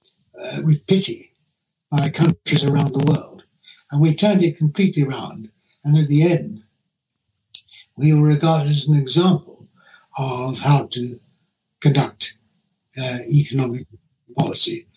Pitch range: 135-165 Hz